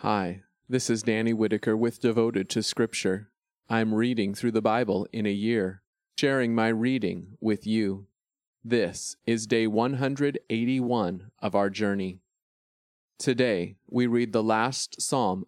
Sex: male